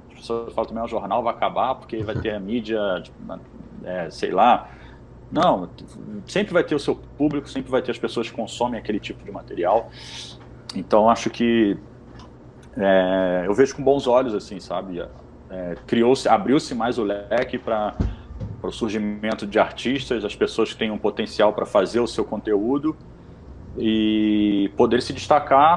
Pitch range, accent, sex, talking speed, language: 105-130 Hz, Brazilian, male, 165 wpm, Portuguese